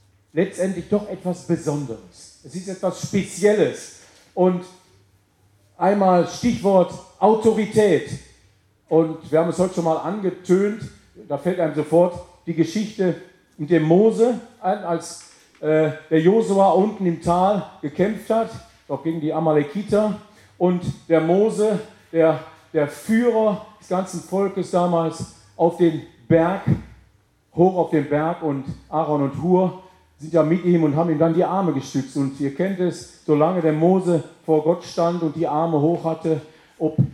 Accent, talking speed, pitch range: German, 145 wpm, 155-185 Hz